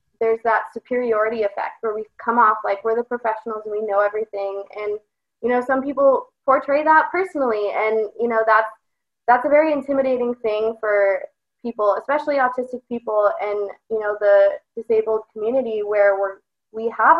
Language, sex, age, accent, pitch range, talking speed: English, female, 20-39, American, 210-270 Hz, 170 wpm